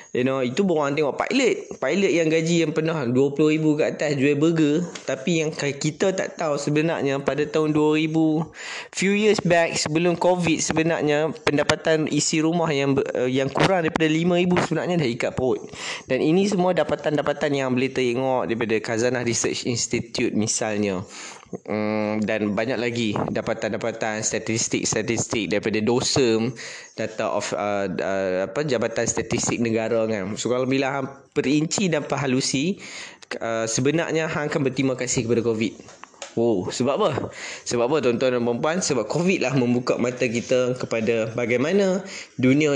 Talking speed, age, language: 145 wpm, 20-39, Malay